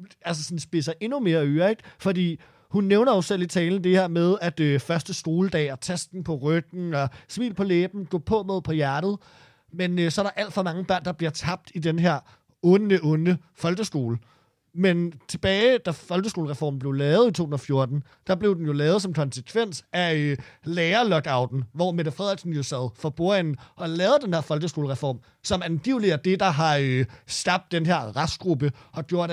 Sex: male